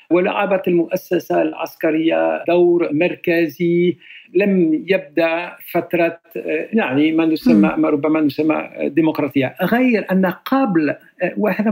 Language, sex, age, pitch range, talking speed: Arabic, male, 60-79, 175-220 Hz, 95 wpm